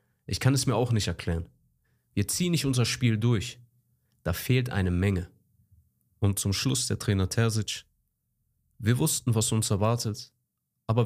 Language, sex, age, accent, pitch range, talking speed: German, male, 30-49, German, 100-125 Hz, 155 wpm